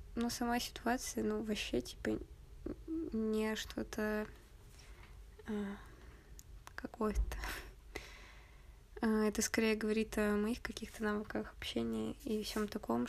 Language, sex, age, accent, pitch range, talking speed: Russian, female, 20-39, native, 195-230 Hz, 90 wpm